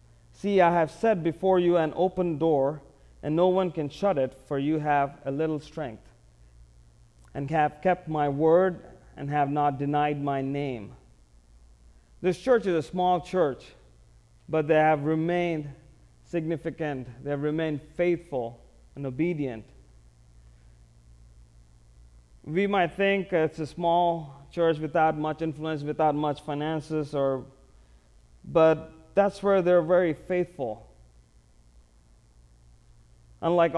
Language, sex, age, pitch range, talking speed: English, male, 30-49, 115-165 Hz, 125 wpm